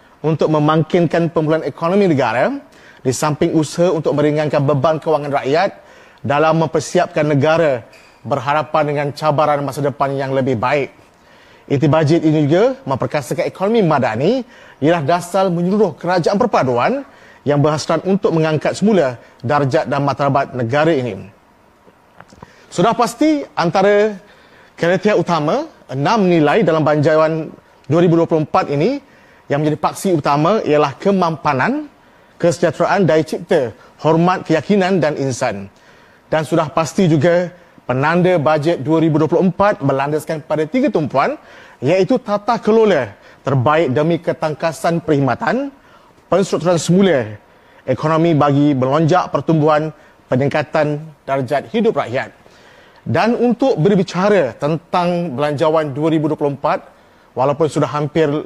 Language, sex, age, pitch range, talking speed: Malay, male, 30-49, 150-180 Hz, 110 wpm